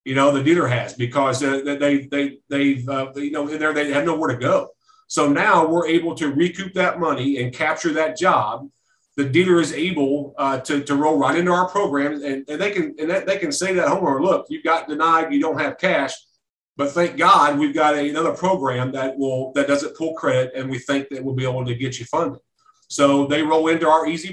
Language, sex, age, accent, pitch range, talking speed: English, male, 40-59, American, 140-170 Hz, 235 wpm